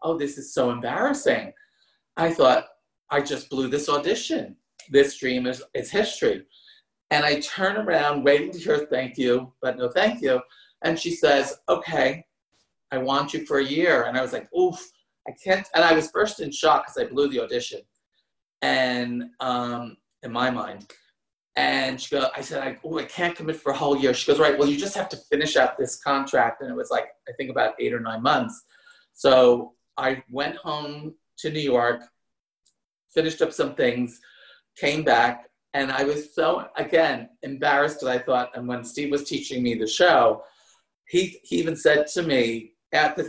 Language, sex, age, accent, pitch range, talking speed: English, male, 40-59, American, 125-165 Hz, 190 wpm